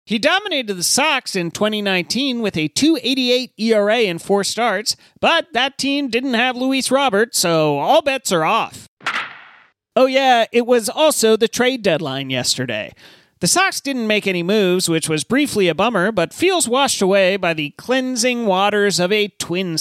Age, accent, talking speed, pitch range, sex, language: 40-59, American, 170 wpm, 180-255 Hz, male, English